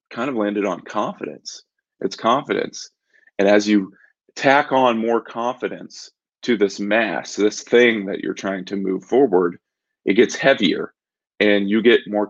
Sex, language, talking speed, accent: male, English, 155 wpm, American